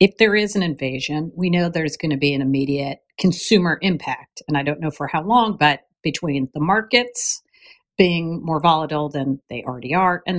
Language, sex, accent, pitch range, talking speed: English, female, American, 145-180 Hz, 195 wpm